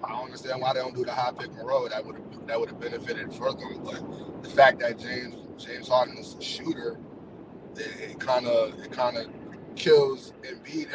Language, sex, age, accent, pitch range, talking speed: English, male, 20-39, American, 145-190 Hz, 205 wpm